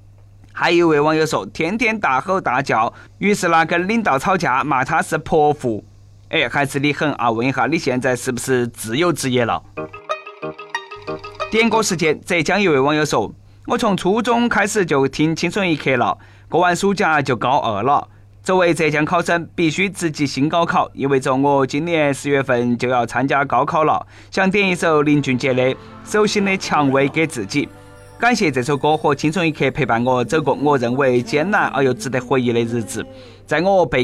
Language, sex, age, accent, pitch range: Chinese, male, 20-39, native, 130-180 Hz